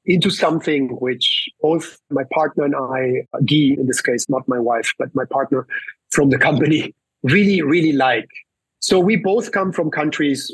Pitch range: 135-160 Hz